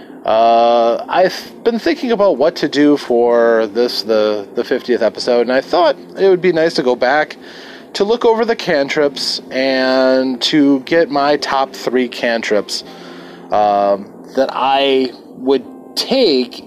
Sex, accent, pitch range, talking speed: male, American, 105-145 Hz, 150 wpm